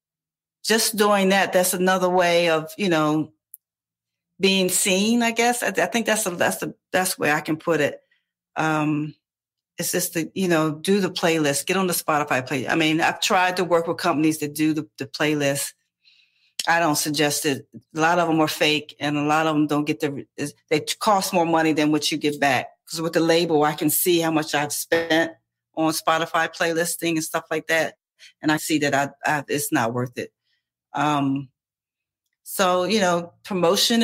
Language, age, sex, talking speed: English, 40-59, female, 200 wpm